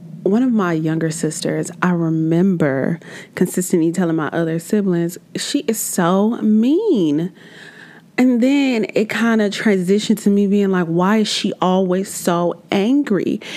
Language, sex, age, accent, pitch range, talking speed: English, female, 30-49, American, 165-205 Hz, 140 wpm